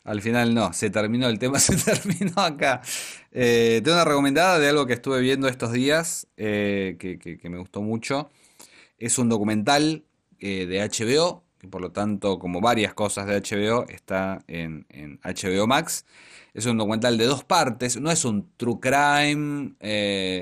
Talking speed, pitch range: 175 wpm, 105-150 Hz